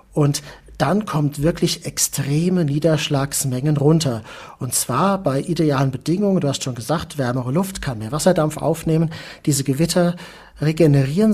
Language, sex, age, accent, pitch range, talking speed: German, male, 40-59, German, 140-165 Hz, 130 wpm